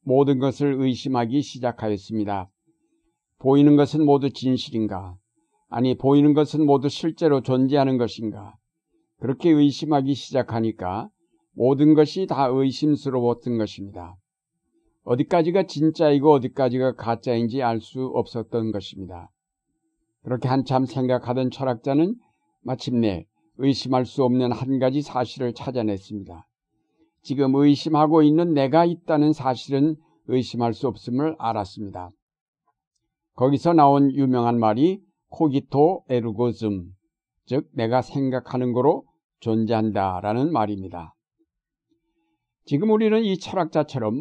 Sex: male